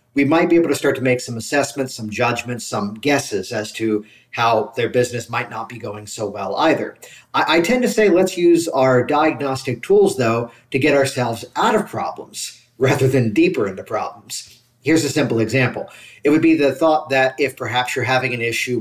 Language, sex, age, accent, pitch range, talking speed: English, male, 40-59, American, 115-150 Hz, 205 wpm